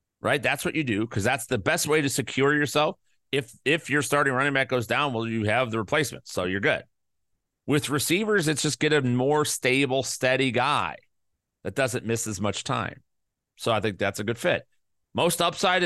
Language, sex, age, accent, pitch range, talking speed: English, male, 40-59, American, 115-145 Hz, 205 wpm